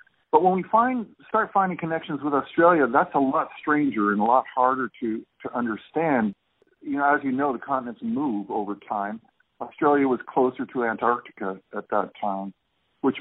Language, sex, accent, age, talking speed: English, male, American, 50-69, 175 wpm